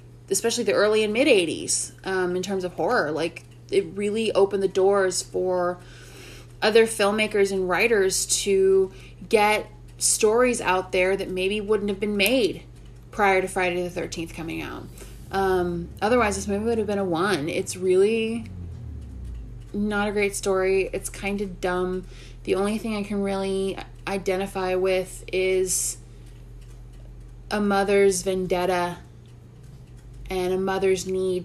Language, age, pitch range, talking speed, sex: English, 20-39, 125-195 Hz, 145 wpm, female